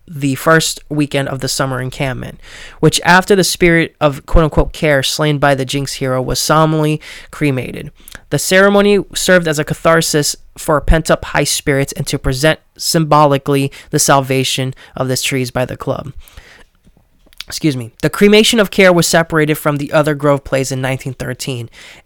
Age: 20-39